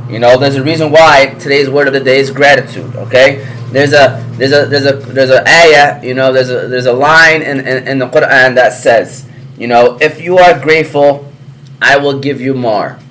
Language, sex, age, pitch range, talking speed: English, male, 20-39, 130-150 Hz, 215 wpm